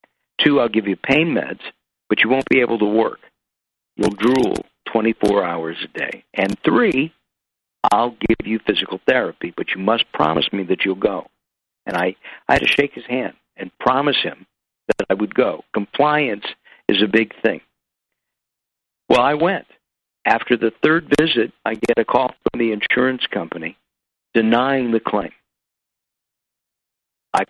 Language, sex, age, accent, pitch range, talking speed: English, male, 60-79, American, 105-125 Hz, 160 wpm